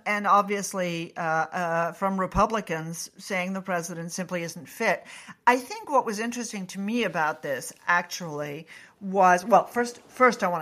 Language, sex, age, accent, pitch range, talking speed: English, female, 50-69, American, 165-220 Hz, 160 wpm